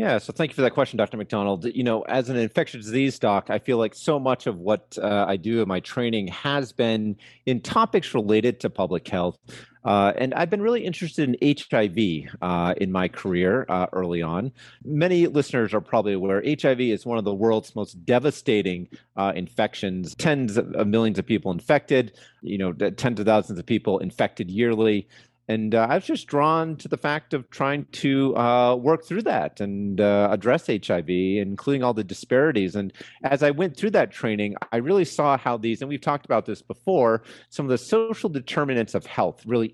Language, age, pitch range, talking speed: English, 30-49, 105-145 Hz, 200 wpm